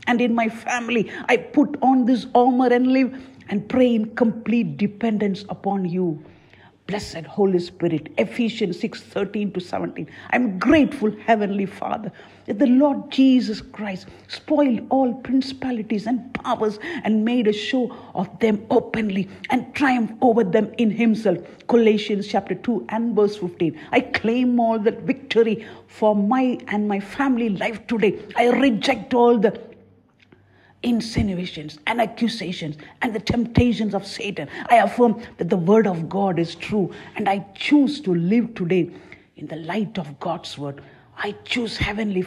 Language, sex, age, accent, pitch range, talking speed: English, female, 50-69, Indian, 195-250 Hz, 150 wpm